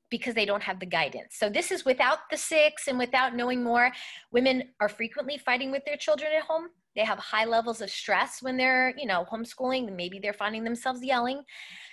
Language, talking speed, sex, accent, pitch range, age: English, 205 wpm, female, American, 210-275 Hz, 20-39